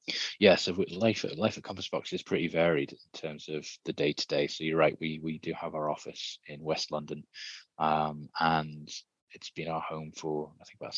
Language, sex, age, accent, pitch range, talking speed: Hebrew, male, 20-39, British, 75-85 Hz, 210 wpm